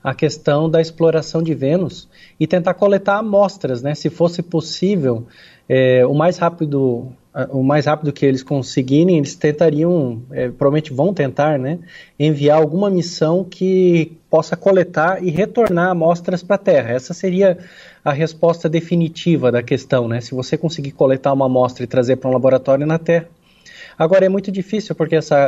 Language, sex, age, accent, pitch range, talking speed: Portuguese, male, 20-39, Brazilian, 140-180 Hz, 155 wpm